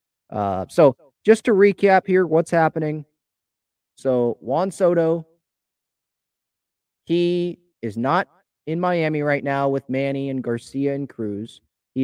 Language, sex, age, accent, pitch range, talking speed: English, male, 30-49, American, 115-155 Hz, 125 wpm